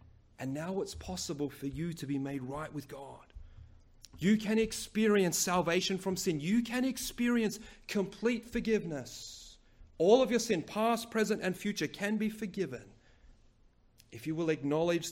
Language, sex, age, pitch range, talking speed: English, male, 30-49, 115-185 Hz, 150 wpm